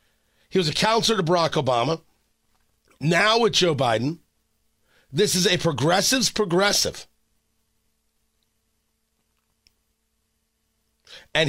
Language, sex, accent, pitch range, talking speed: English, male, American, 150-195 Hz, 90 wpm